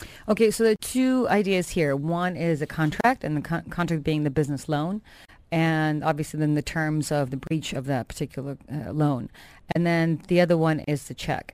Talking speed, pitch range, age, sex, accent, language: 205 wpm, 150-175 Hz, 30-49, female, American, English